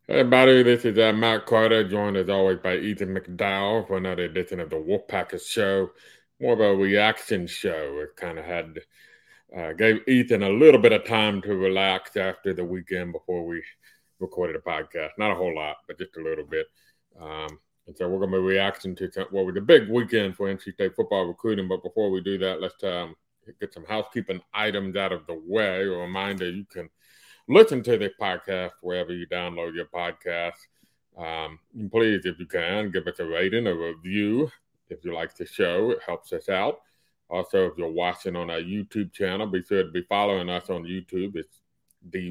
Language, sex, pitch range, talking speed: English, male, 90-115 Hz, 205 wpm